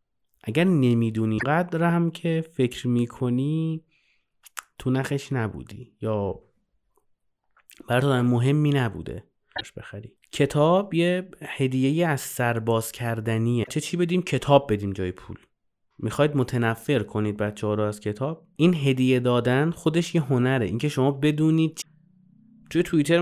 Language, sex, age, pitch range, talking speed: Persian, male, 30-49, 115-155 Hz, 130 wpm